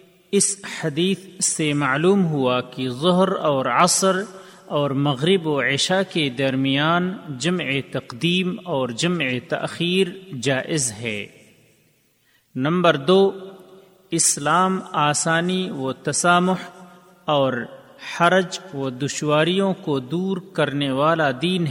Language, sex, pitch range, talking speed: Urdu, male, 145-185 Hz, 100 wpm